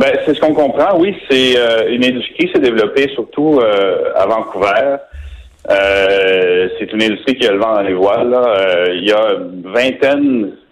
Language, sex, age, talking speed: French, male, 40-59, 190 wpm